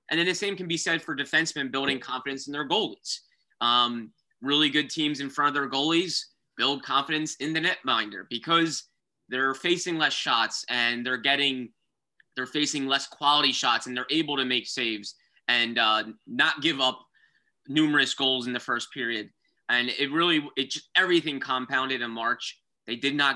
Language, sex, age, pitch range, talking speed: English, male, 20-39, 120-150 Hz, 175 wpm